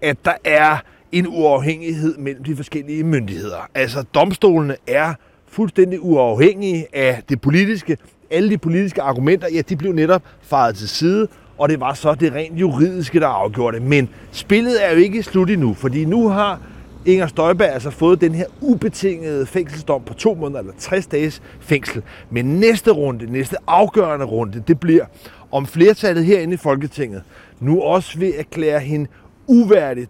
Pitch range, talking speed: 130-180 Hz, 165 wpm